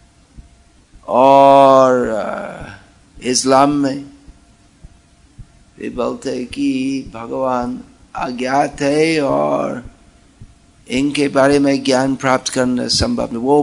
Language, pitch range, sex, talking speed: Hindi, 120-145 Hz, male, 90 wpm